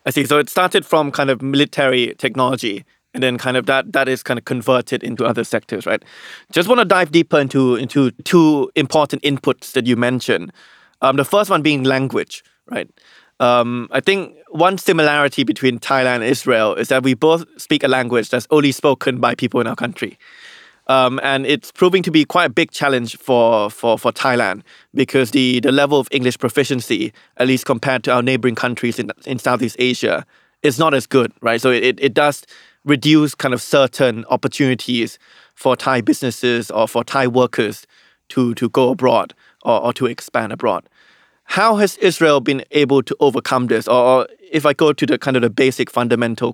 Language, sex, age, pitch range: Thai, male, 20-39, 125-150 Hz